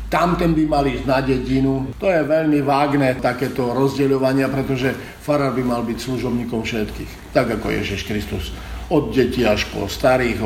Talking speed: 160 wpm